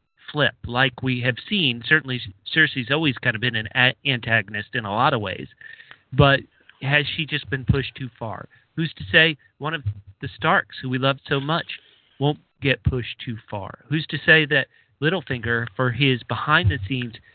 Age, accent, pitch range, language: 40-59, American, 115-150 Hz, English